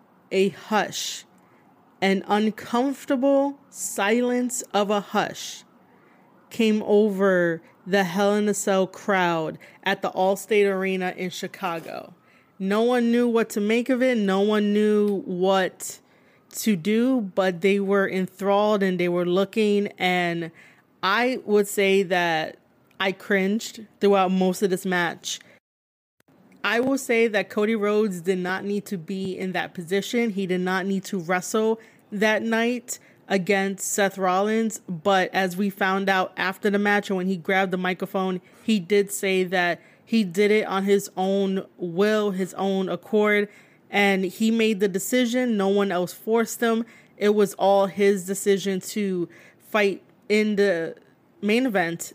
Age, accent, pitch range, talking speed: 20-39, American, 190-215 Hz, 150 wpm